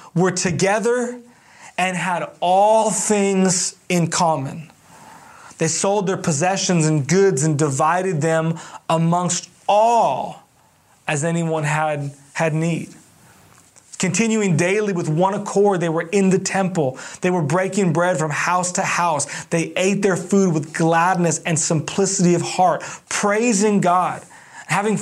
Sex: male